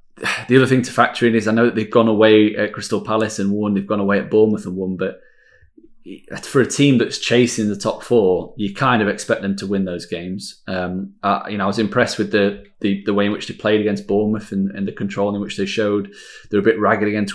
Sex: male